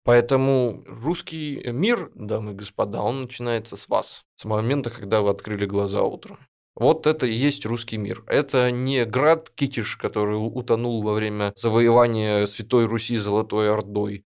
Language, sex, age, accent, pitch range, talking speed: Russian, male, 20-39, native, 105-125 Hz, 150 wpm